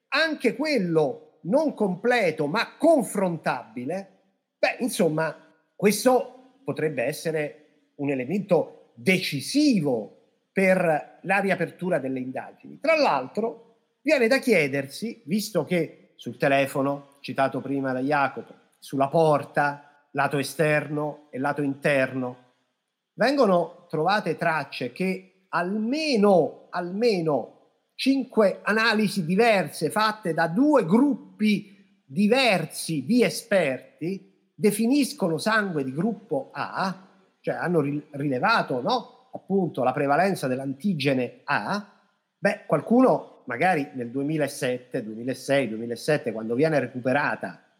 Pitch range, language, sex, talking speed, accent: 140-215 Hz, Italian, male, 100 wpm, native